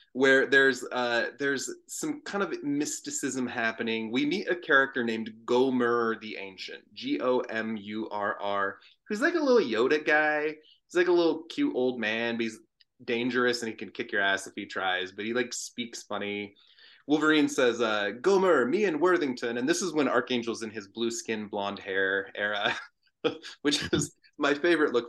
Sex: male